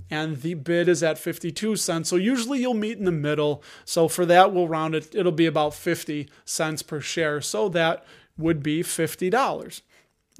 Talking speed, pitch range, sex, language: 185 wpm, 160-210 Hz, male, English